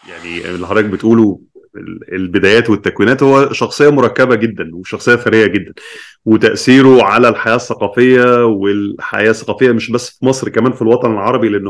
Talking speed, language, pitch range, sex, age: 140 wpm, Arabic, 105-125 Hz, male, 30-49